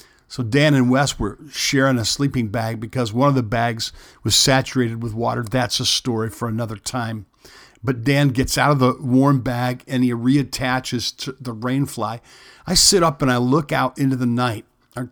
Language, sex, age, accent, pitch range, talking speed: English, male, 50-69, American, 120-135 Hz, 195 wpm